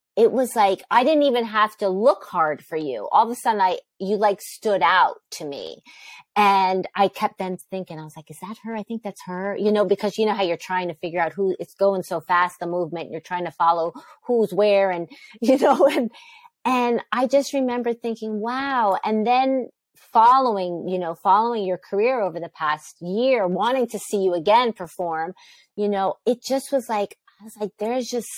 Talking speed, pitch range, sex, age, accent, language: 215 wpm, 170-225 Hz, female, 30-49, American, English